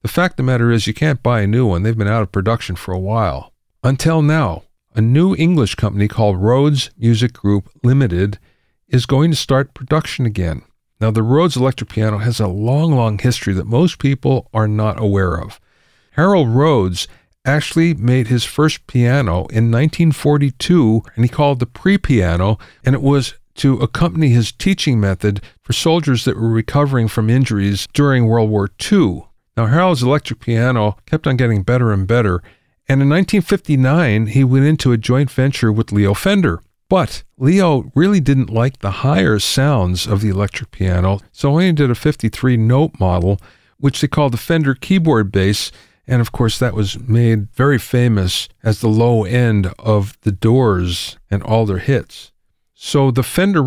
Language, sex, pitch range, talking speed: English, male, 105-140 Hz, 175 wpm